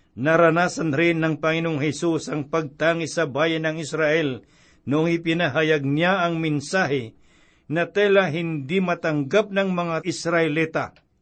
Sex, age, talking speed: male, 60-79, 125 wpm